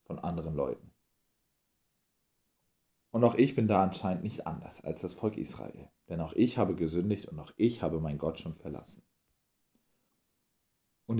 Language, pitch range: German, 90-110 Hz